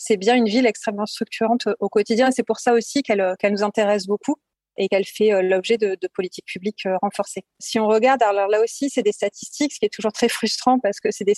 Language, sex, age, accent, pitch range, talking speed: French, female, 30-49, French, 200-235 Hz, 245 wpm